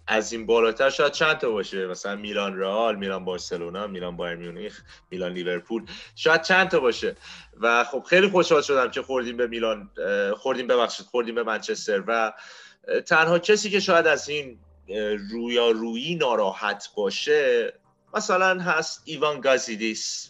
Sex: male